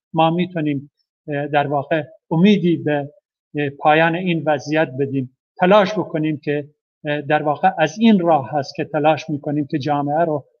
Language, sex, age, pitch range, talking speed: Persian, male, 50-69, 145-165 Hz, 140 wpm